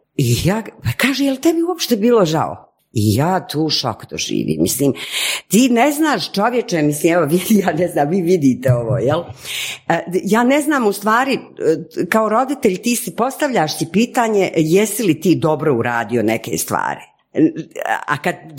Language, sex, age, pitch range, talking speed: Croatian, female, 50-69, 140-225 Hz, 155 wpm